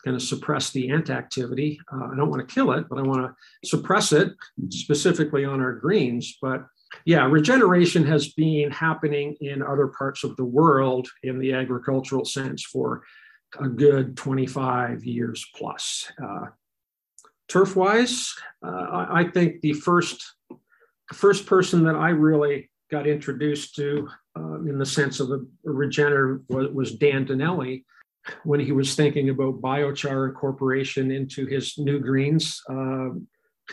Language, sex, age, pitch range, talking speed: English, male, 50-69, 135-155 Hz, 140 wpm